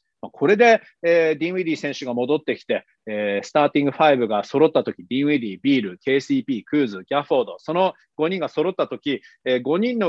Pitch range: 135-210 Hz